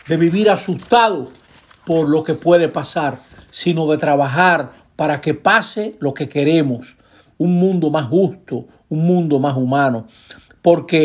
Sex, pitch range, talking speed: male, 145-195 Hz, 140 wpm